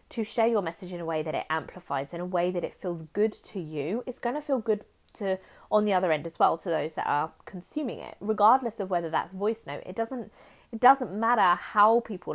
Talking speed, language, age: 245 wpm, English, 20-39